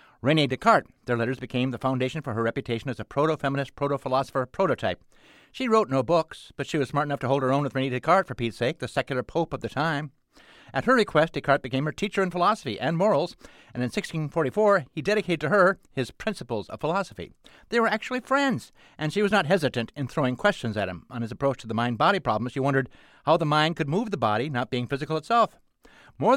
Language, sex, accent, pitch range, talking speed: English, male, American, 130-185 Hz, 220 wpm